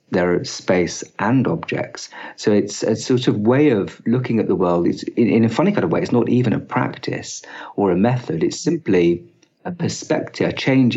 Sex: male